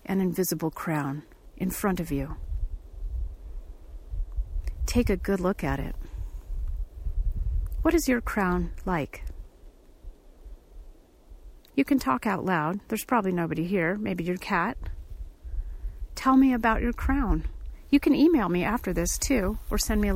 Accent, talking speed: American, 135 wpm